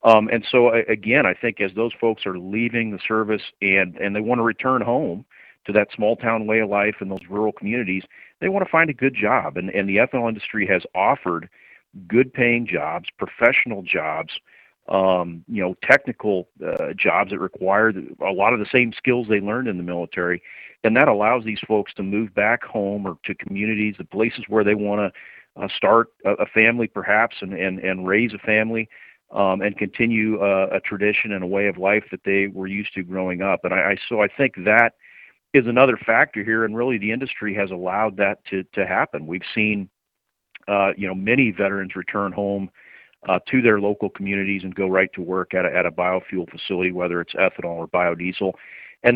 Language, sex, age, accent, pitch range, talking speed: English, male, 40-59, American, 95-115 Hz, 205 wpm